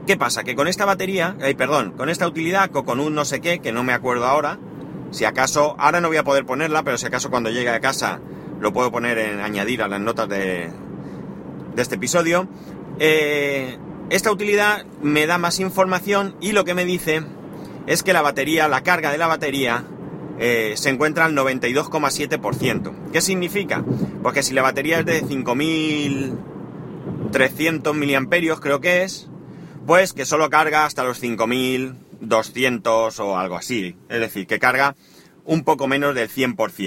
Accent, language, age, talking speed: Spanish, English, 30-49, 175 wpm